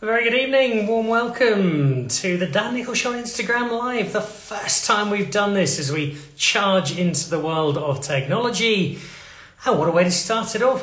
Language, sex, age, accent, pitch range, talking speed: English, male, 30-49, British, 140-205 Hz, 200 wpm